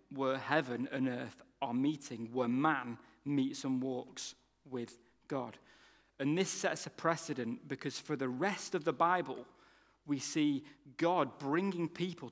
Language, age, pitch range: English, 40-59, 130-150 Hz